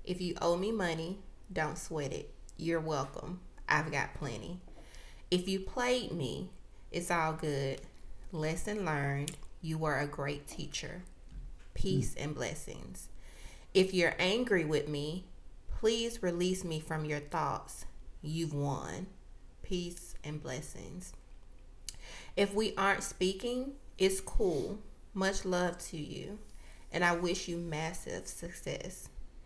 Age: 30-49